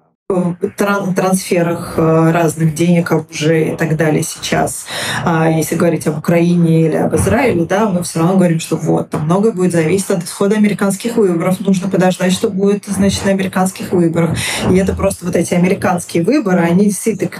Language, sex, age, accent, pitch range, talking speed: Russian, female, 20-39, native, 170-205 Hz, 160 wpm